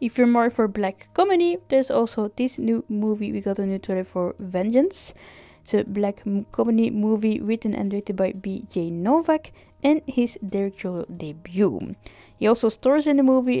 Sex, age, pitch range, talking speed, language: female, 10-29, 190-260 Hz, 170 wpm, English